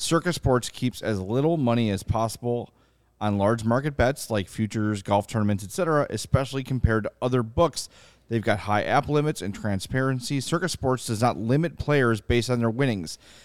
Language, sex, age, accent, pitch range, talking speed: English, male, 30-49, American, 110-135 Hz, 175 wpm